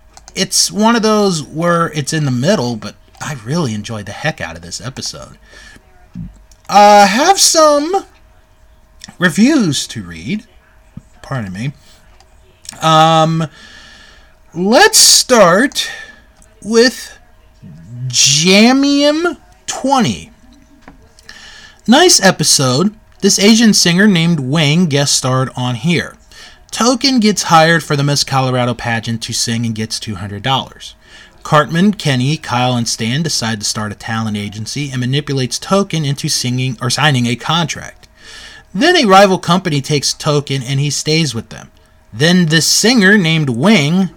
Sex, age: male, 30-49